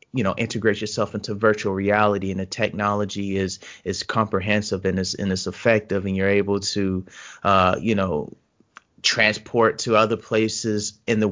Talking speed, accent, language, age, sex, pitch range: 165 wpm, American, English, 30-49, male, 105-120 Hz